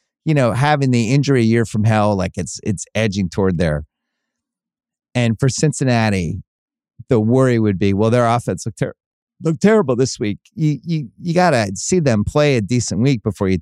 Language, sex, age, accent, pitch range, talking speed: English, male, 30-49, American, 100-135 Hz, 195 wpm